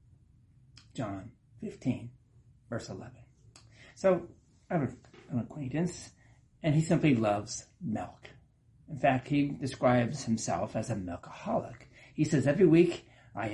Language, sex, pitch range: English, male, 120-155 Hz